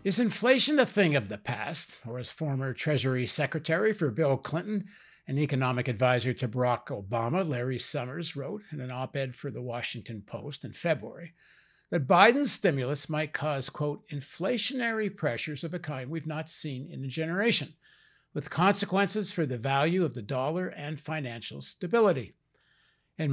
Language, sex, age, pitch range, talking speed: English, male, 60-79, 130-180 Hz, 160 wpm